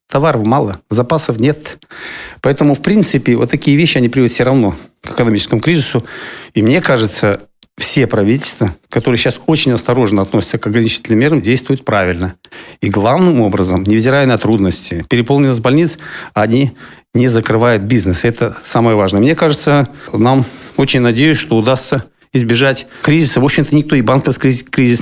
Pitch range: 110-135 Hz